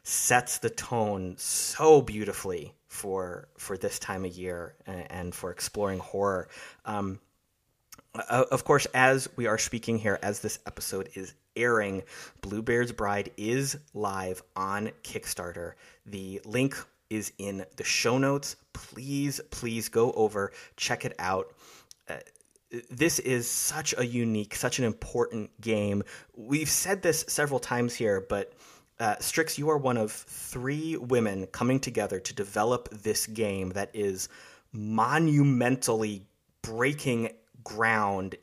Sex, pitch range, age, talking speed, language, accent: male, 100-130 Hz, 30-49, 135 wpm, English, American